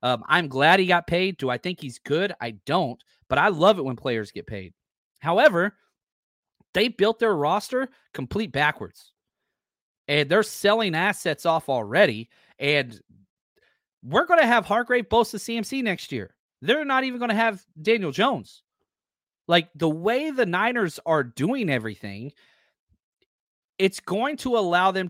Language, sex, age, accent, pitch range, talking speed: English, male, 30-49, American, 145-230 Hz, 160 wpm